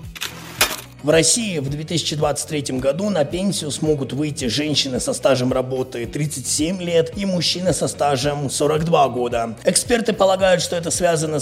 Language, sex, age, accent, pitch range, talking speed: Russian, male, 30-49, native, 135-175 Hz, 135 wpm